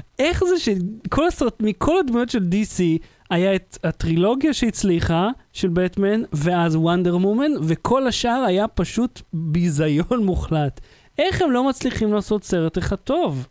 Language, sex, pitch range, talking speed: Hebrew, male, 165-220 Hz, 140 wpm